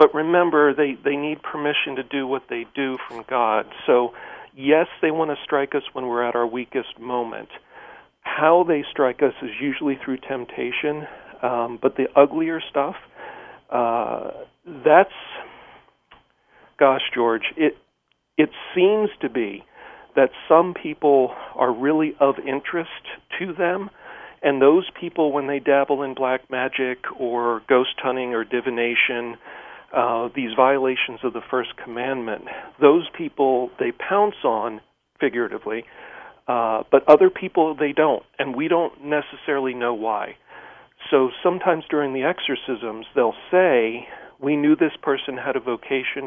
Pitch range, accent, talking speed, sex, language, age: 125-160 Hz, American, 145 wpm, male, English, 40-59